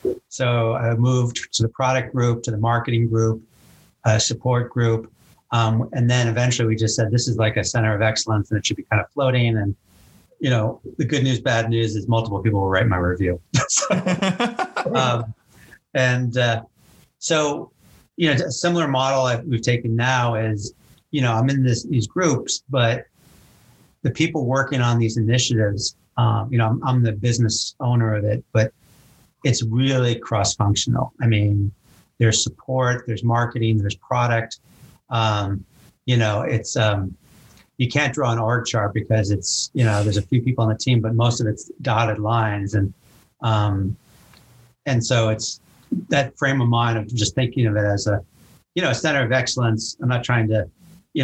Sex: male